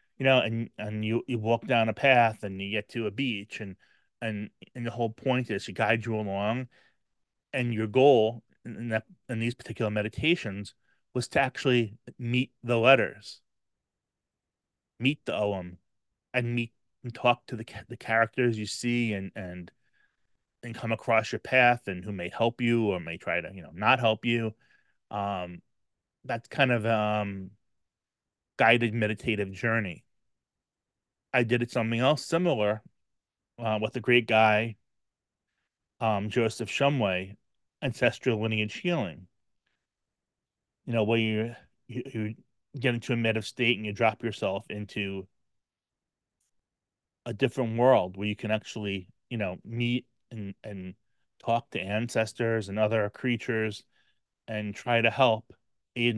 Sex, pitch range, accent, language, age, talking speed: male, 105-120 Hz, American, English, 30-49, 150 wpm